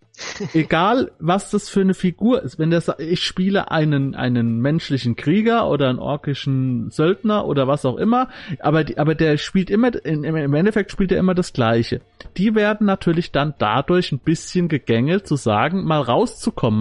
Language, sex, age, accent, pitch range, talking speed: German, male, 30-49, German, 130-180 Hz, 170 wpm